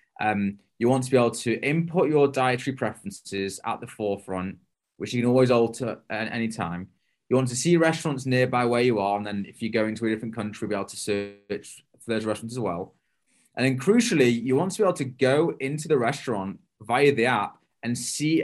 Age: 20-39